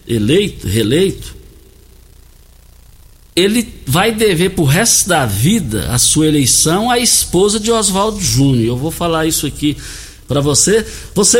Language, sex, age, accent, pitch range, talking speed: Portuguese, male, 60-79, Brazilian, 115-180 Hz, 130 wpm